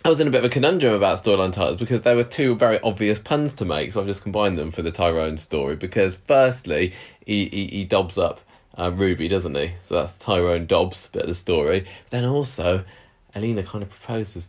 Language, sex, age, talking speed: English, male, 20-39, 230 wpm